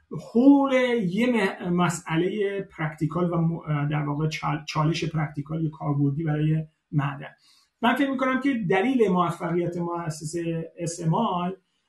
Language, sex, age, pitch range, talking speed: Persian, male, 30-49, 155-190 Hz, 105 wpm